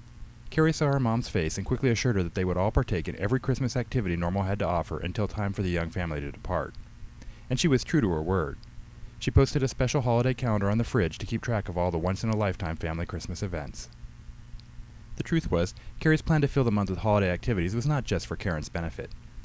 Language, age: English, 30-49